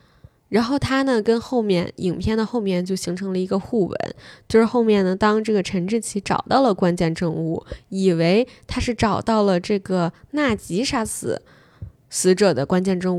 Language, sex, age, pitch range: Chinese, female, 10-29, 180-220 Hz